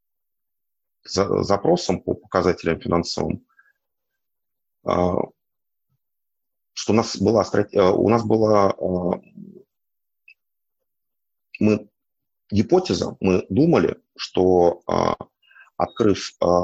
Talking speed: 60 wpm